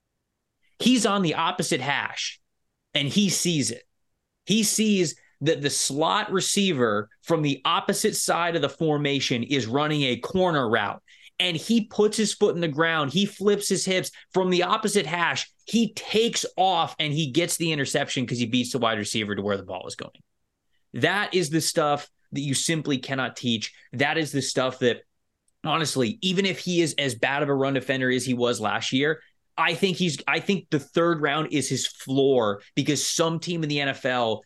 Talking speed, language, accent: 190 wpm, English, American